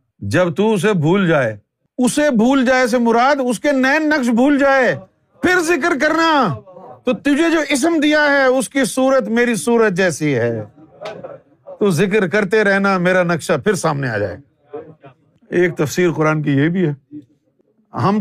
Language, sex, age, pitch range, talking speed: Urdu, male, 50-69, 145-230 Hz, 165 wpm